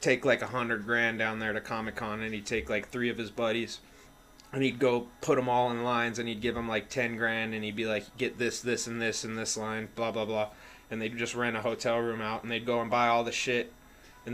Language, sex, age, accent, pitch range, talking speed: English, male, 20-39, American, 110-120 Hz, 270 wpm